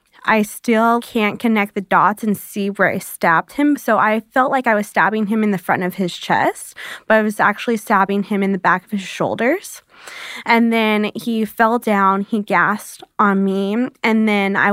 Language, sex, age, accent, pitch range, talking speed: English, female, 20-39, American, 200-225 Hz, 205 wpm